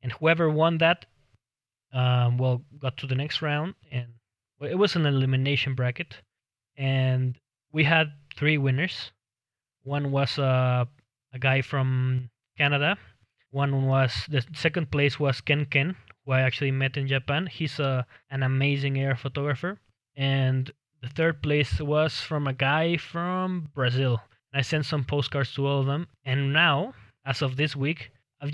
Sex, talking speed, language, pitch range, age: male, 155 wpm, English, 125-150 Hz, 20-39